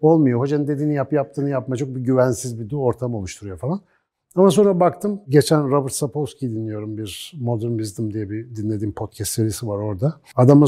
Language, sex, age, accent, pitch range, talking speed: Turkish, male, 60-79, native, 110-145 Hz, 175 wpm